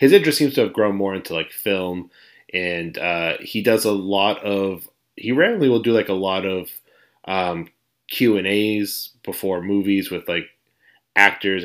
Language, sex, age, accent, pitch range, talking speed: English, male, 30-49, American, 90-110 Hz, 165 wpm